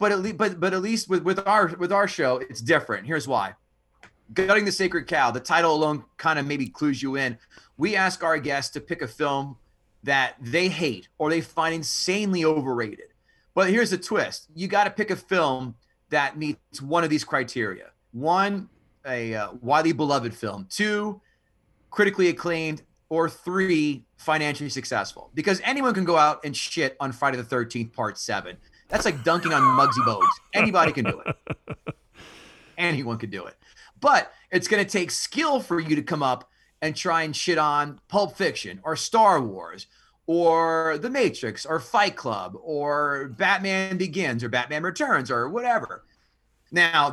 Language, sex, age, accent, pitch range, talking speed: English, male, 30-49, American, 135-190 Hz, 170 wpm